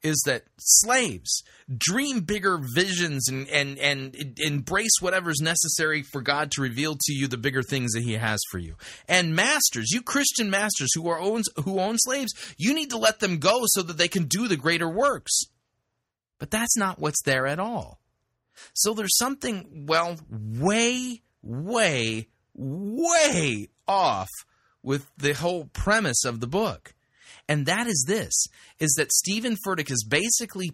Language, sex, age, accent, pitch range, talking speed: English, male, 30-49, American, 125-180 Hz, 160 wpm